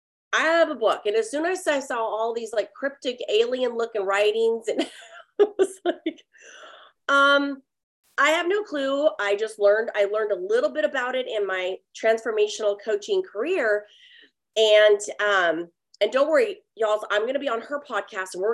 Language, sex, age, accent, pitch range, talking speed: English, female, 30-49, American, 195-280 Hz, 180 wpm